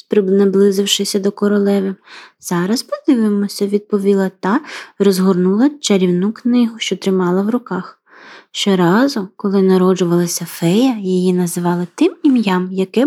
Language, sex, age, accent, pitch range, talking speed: Ukrainian, female, 20-39, native, 195-280 Hz, 110 wpm